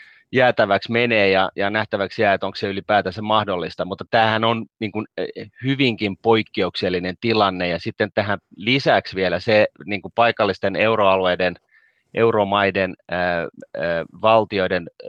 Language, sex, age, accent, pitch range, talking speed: Finnish, male, 30-49, native, 95-110 Hz, 130 wpm